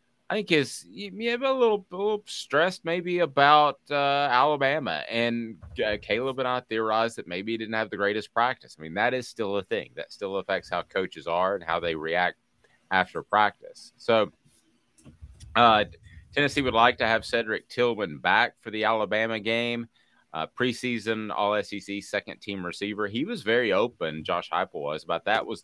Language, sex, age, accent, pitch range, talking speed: English, male, 30-49, American, 90-125 Hz, 180 wpm